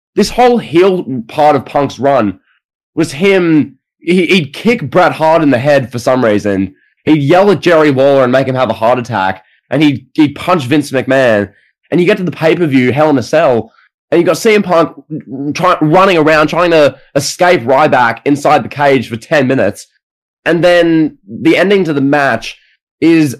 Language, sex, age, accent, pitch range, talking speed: English, male, 10-29, Australian, 130-160 Hz, 185 wpm